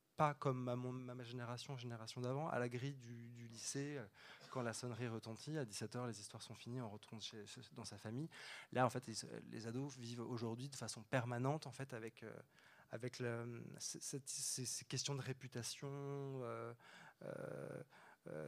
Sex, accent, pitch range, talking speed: male, French, 120-140 Hz, 175 wpm